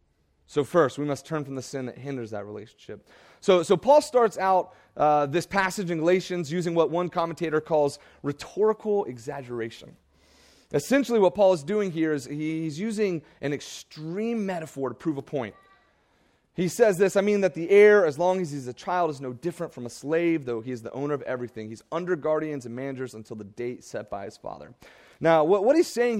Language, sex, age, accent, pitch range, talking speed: English, male, 30-49, American, 135-190 Hz, 205 wpm